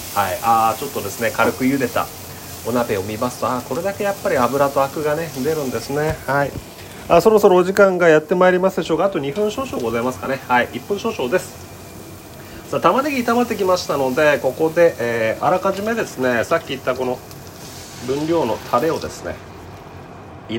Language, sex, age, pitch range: Japanese, male, 30-49, 110-175 Hz